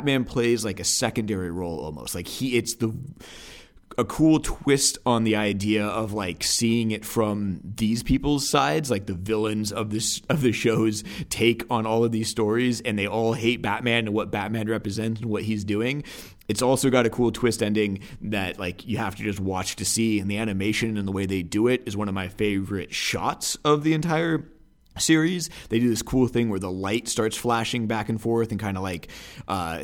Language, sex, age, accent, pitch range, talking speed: English, male, 30-49, American, 100-120 Hz, 210 wpm